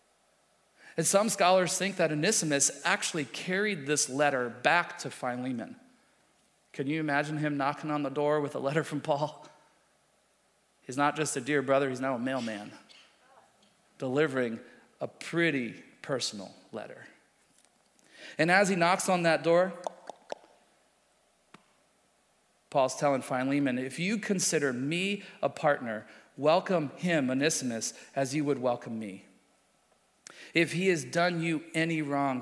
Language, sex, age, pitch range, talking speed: English, male, 40-59, 130-170 Hz, 135 wpm